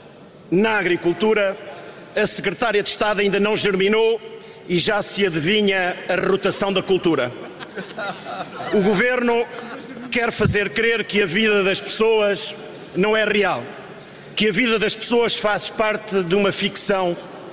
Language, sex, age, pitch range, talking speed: Portuguese, male, 50-69, 180-215 Hz, 135 wpm